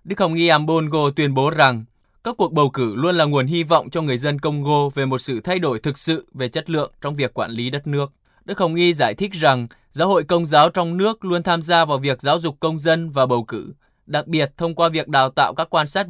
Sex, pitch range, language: male, 130-165 Hz, Vietnamese